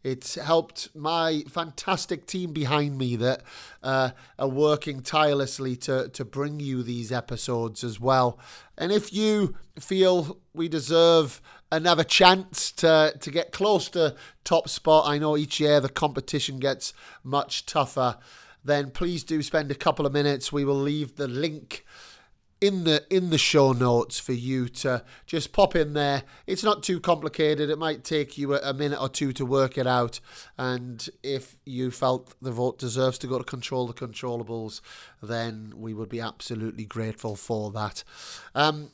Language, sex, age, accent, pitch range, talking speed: English, male, 30-49, British, 125-155 Hz, 165 wpm